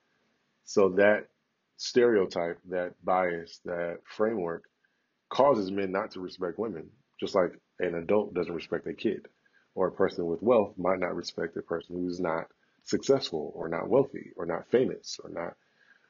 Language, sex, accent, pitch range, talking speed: English, male, American, 95-140 Hz, 155 wpm